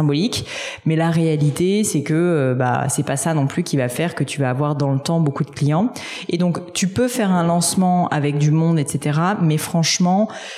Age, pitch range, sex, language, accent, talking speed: 30-49, 140-175 Hz, female, French, French, 220 wpm